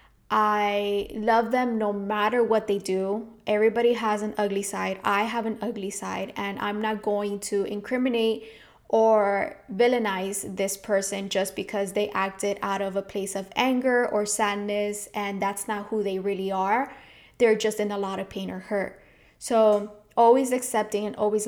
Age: 20-39